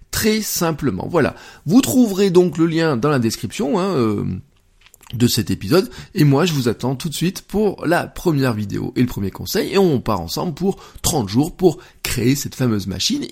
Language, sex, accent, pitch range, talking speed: French, male, French, 110-150 Hz, 200 wpm